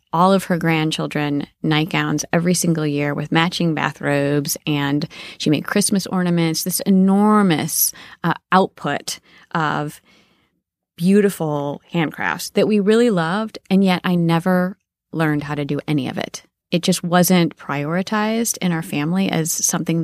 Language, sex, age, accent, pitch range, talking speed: English, female, 30-49, American, 150-180 Hz, 140 wpm